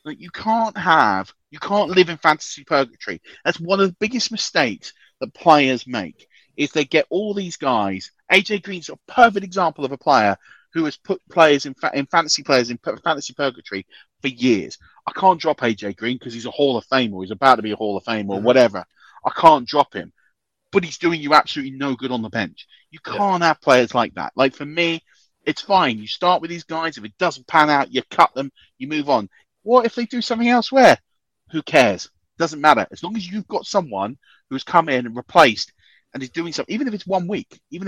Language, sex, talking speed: English, male, 215 wpm